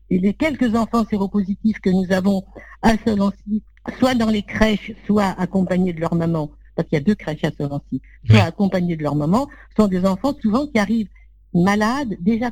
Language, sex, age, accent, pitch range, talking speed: French, female, 60-79, French, 175-220 Hz, 190 wpm